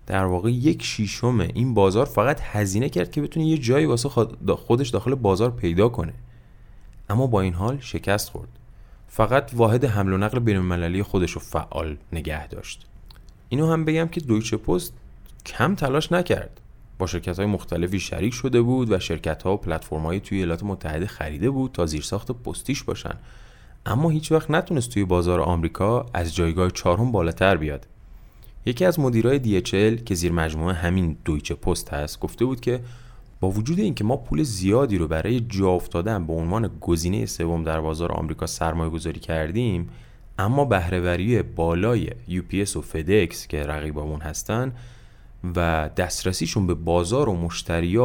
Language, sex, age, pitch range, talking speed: Persian, male, 20-39, 85-120 Hz, 155 wpm